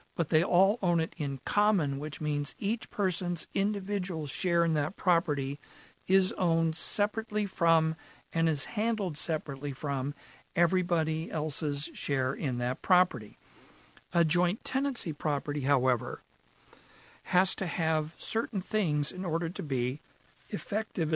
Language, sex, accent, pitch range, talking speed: English, male, American, 145-185 Hz, 130 wpm